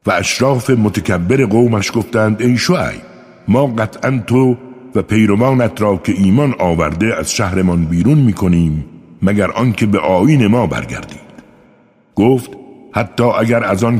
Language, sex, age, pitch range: Persian, male, 60-79, 90-120 Hz